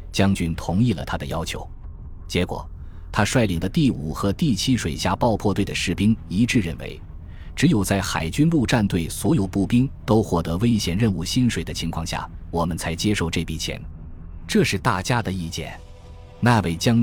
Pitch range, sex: 85-105 Hz, male